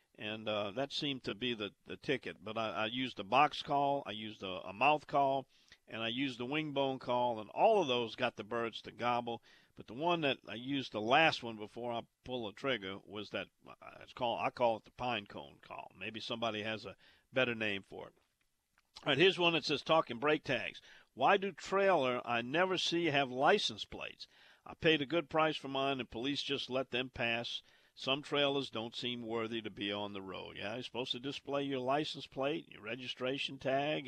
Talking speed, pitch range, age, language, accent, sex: 215 wpm, 115-150 Hz, 50-69, English, American, male